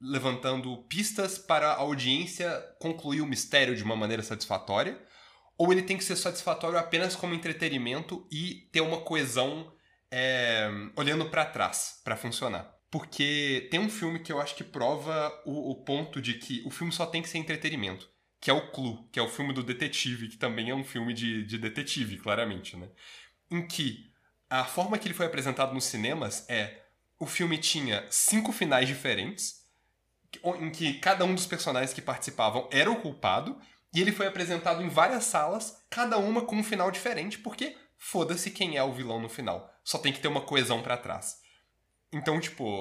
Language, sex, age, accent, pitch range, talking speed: Portuguese, male, 20-39, Brazilian, 125-175 Hz, 185 wpm